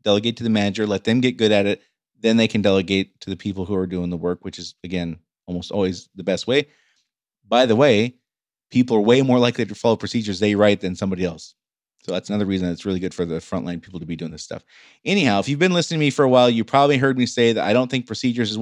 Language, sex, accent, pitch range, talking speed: English, male, American, 105-125 Hz, 270 wpm